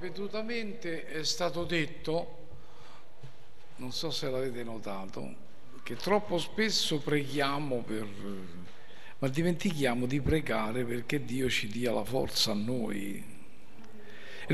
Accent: native